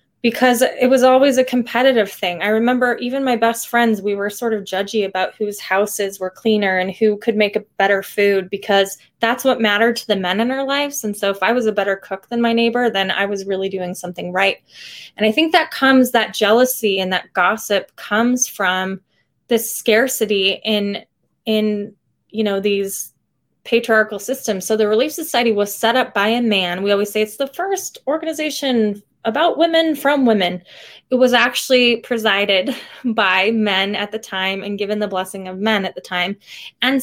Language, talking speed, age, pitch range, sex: English, 195 wpm, 20-39, 200-245 Hz, female